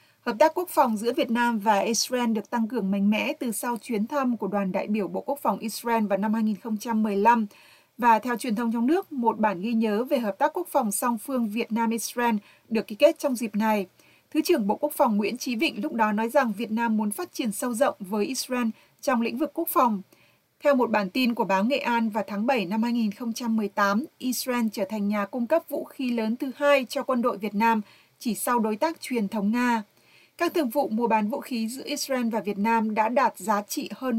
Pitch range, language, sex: 220-265 Hz, Vietnamese, female